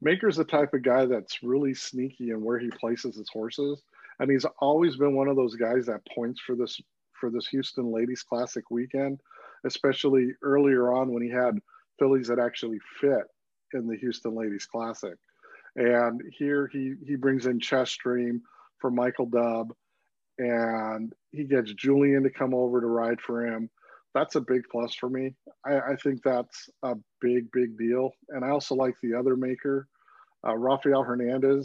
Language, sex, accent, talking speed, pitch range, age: English, male, American, 175 wpm, 115-135 Hz, 50-69